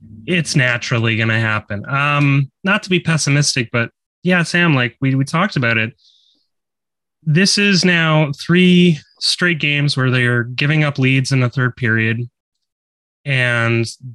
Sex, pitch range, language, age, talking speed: male, 120-180 Hz, English, 30-49, 145 wpm